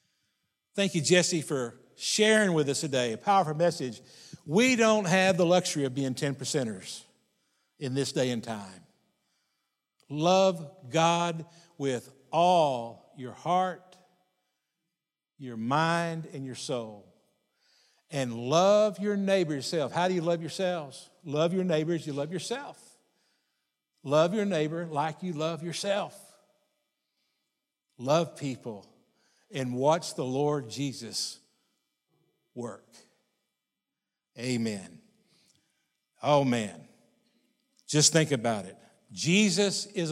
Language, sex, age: English, male, 60-79